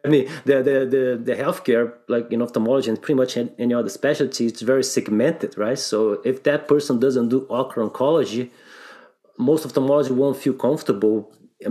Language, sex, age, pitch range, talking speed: English, male, 30-49, 125-145 Hz, 175 wpm